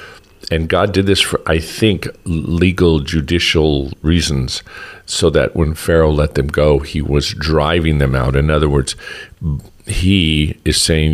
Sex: male